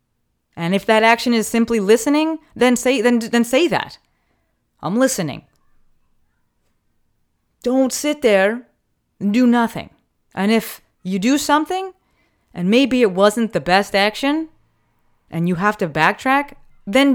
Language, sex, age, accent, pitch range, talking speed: English, female, 30-49, American, 155-230 Hz, 135 wpm